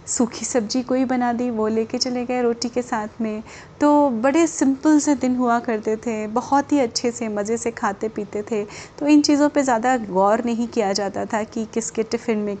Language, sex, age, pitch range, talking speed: Hindi, female, 30-49, 220-265 Hz, 210 wpm